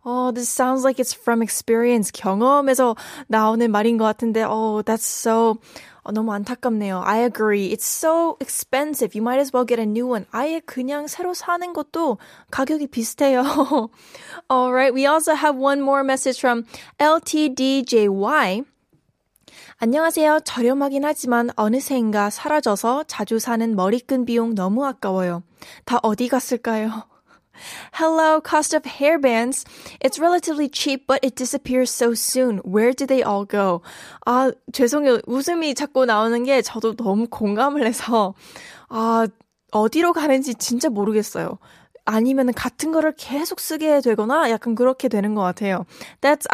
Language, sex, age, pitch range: Korean, female, 10-29, 225-275 Hz